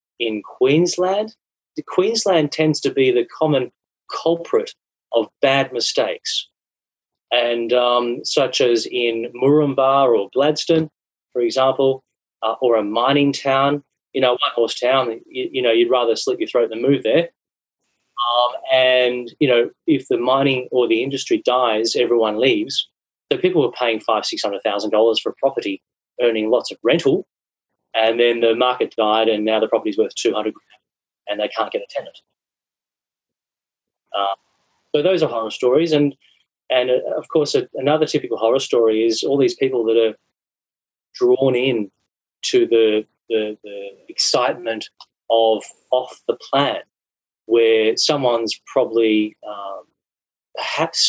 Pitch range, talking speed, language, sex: 115-180 Hz, 150 wpm, English, male